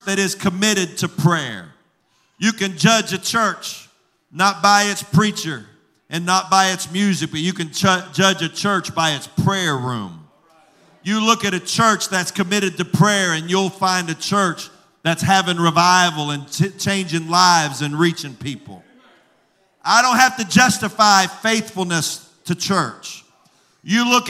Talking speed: 155 wpm